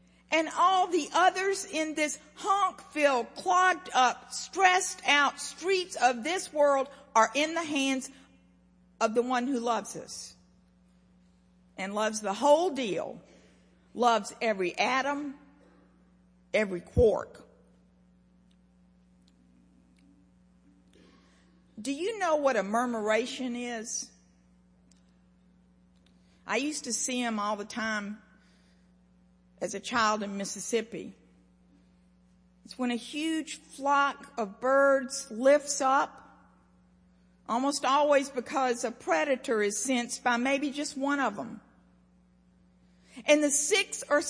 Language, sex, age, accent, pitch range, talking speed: English, female, 50-69, American, 180-295 Hz, 105 wpm